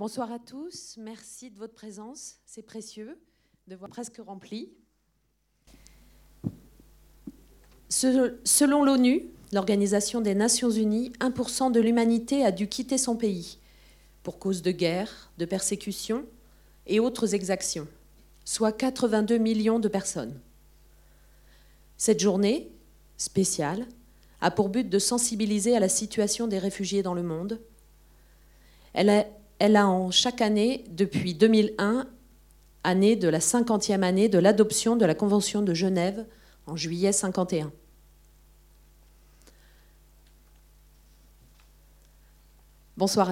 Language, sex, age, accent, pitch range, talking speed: French, female, 40-59, French, 175-225 Hz, 115 wpm